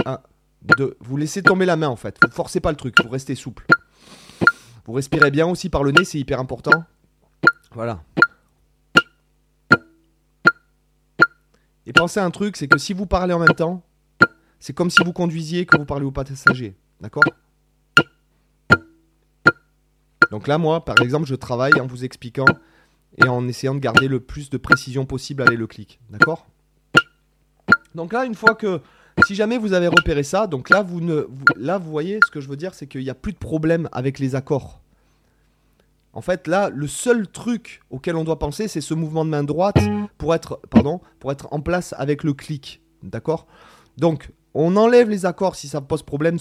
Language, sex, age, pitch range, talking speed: French, male, 30-49, 135-180 Hz, 180 wpm